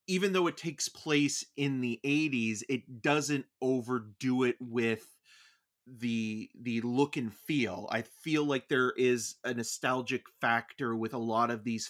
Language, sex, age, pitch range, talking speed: English, male, 30-49, 115-145 Hz, 155 wpm